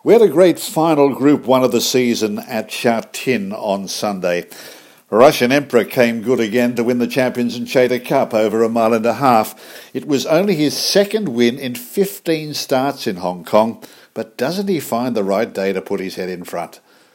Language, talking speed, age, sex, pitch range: English, 205 wpm, 50-69, male, 110-140 Hz